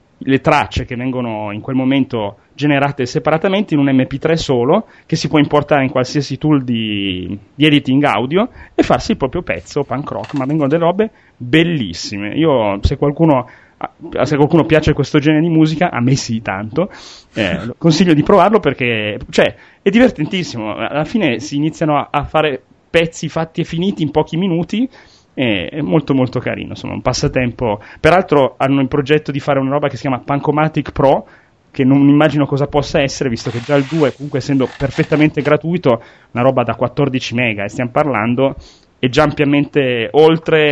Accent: native